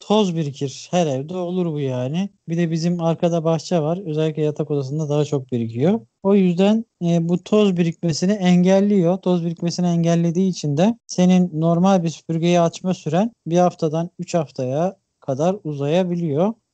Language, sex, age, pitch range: Turkish, male, 40-59, 150-180 Hz